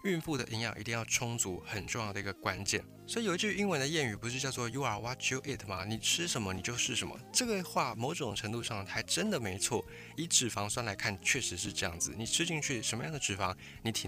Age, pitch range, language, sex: 20-39, 100-145 Hz, Chinese, male